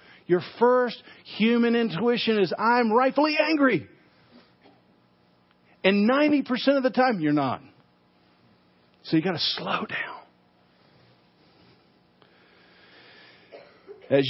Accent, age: American, 50-69